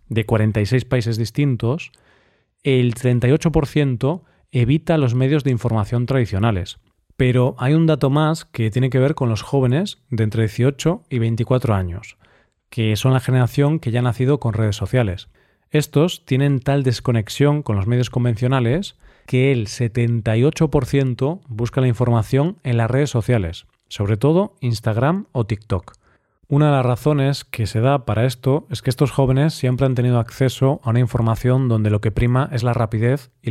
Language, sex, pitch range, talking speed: Spanish, male, 110-140 Hz, 165 wpm